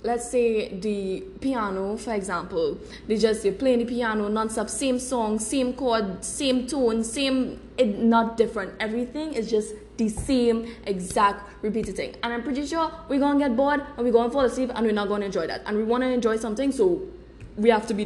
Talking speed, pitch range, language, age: 195 wpm, 200-255 Hz, English, 10-29